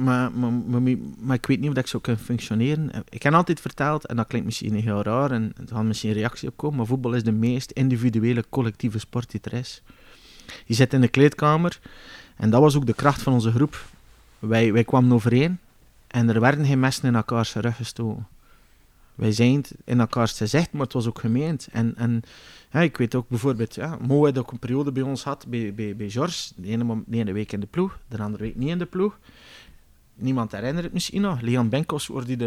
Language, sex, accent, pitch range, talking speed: Dutch, male, Dutch, 115-140 Hz, 235 wpm